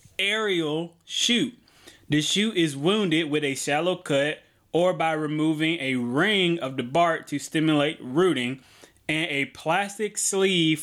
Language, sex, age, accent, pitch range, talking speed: English, male, 20-39, American, 140-170 Hz, 140 wpm